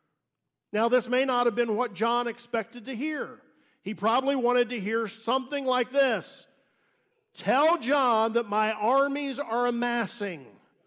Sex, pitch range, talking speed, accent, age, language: male, 205-265 Hz, 145 wpm, American, 50-69, English